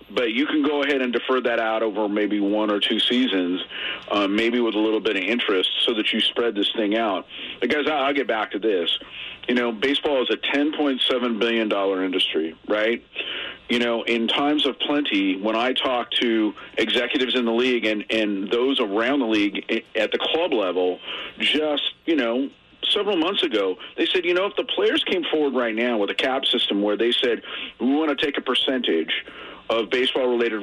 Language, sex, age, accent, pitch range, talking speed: English, male, 40-59, American, 110-150 Hz, 205 wpm